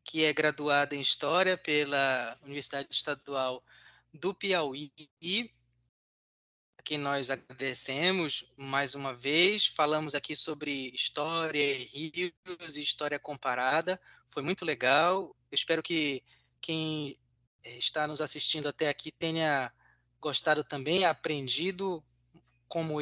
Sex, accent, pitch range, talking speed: male, Brazilian, 135-165 Hz, 105 wpm